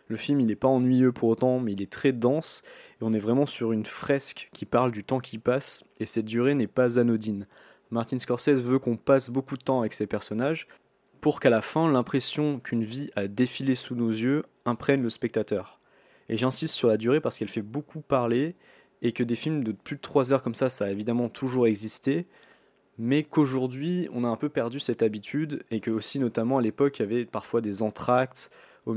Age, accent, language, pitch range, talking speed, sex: 20-39, French, French, 110-135 Hz, 220 wpm, male